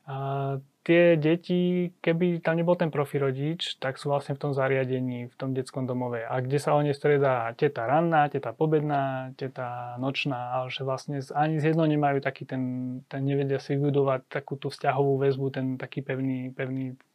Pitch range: 130-155 Hz